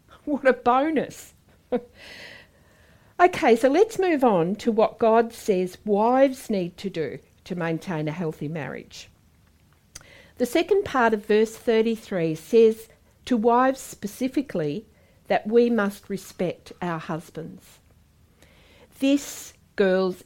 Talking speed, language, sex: 115 wpm, English, female